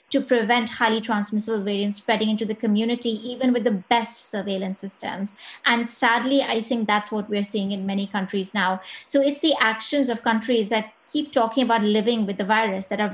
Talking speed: 195 wpm